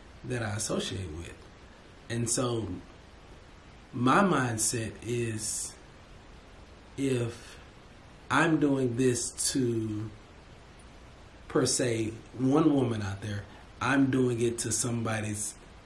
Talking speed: 95 wpm